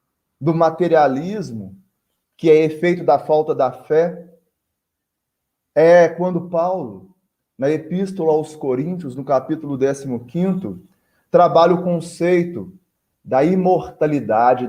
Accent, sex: Brazilian, male